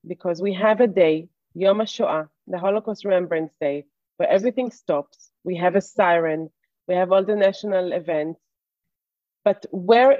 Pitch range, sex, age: 175-220 Hz, female, 30-49